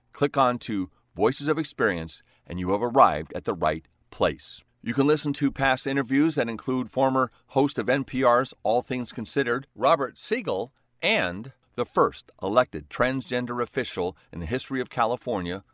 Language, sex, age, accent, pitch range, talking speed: English, male, 40-59, American, 95-130 Hz, 160 wpm